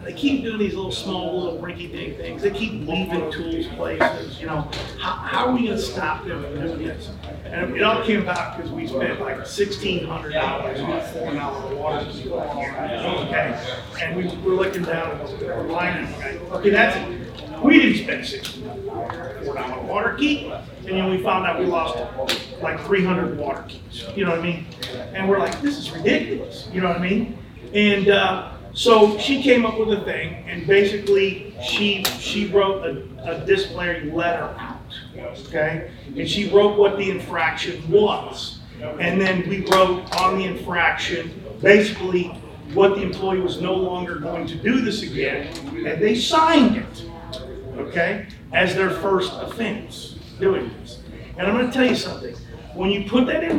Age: 40-59